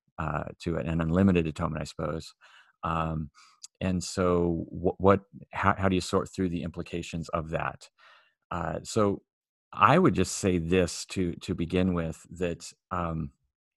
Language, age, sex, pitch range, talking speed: English, 40-59, male, 80-95 Hz, 155 wpm